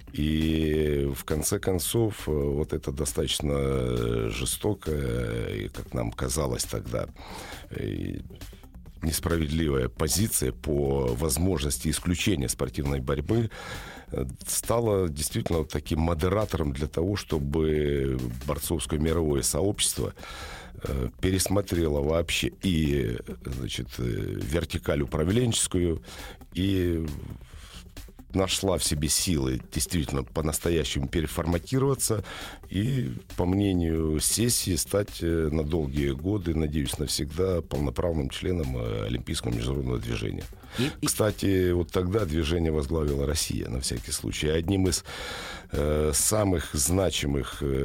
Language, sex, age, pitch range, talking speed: Russian, male, 60-79, 70-90 Hz, 90 wpm